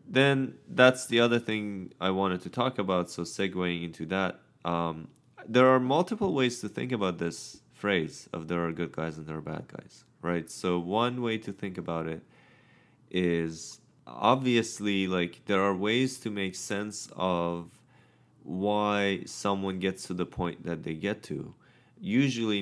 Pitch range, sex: 90-115 Hz, male